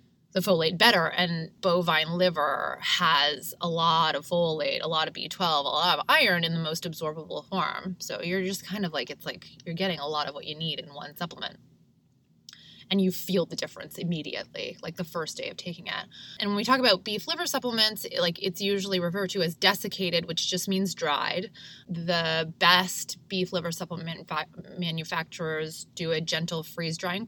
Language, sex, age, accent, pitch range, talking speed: English, female, 20-39, American, 165-200 Hz, 190 wpm